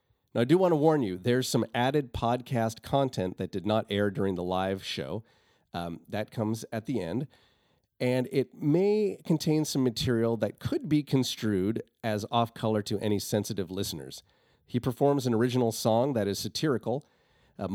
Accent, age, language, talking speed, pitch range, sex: American, 40-59, English, 175 wpm, 105-140 Hz, male